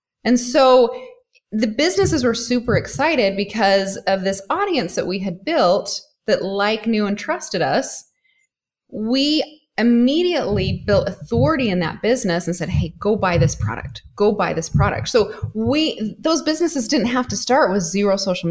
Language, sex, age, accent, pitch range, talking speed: English, female, 20-39, American, 205-280 Hz, 160 wpm